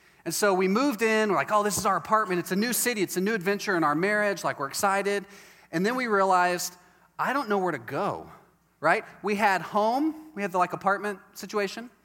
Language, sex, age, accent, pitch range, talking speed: English, male, 30-49, American, 165-210 Hz, 230 wpm